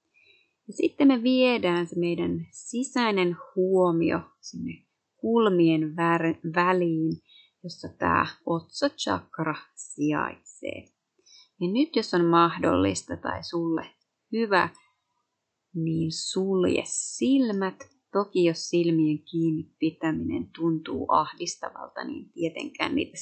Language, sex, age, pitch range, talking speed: Finnish, female, 30-49, 160-230 Hz, 95 wpm